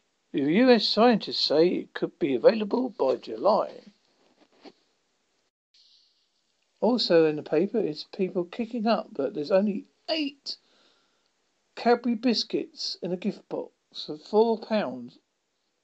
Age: 50-69